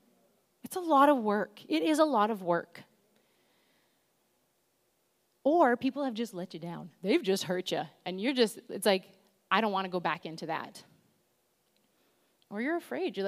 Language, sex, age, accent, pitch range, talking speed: English, female, 30-49, American, 200-250 Hz, 175 wpm